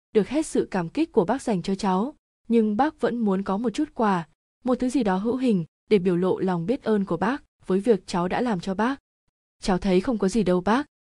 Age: 20-39